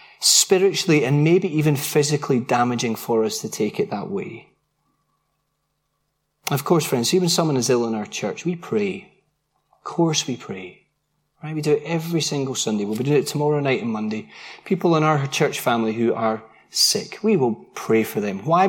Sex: male